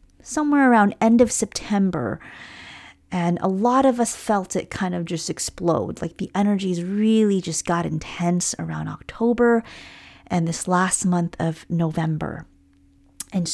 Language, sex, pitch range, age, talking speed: English, female, 175-215 Hz, 30-49, 140 wpm